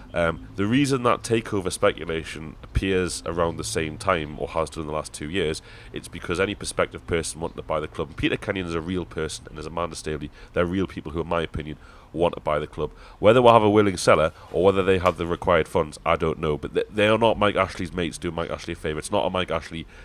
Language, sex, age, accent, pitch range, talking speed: English, male, 30-49, British, 80-95 Hz, 255 wpm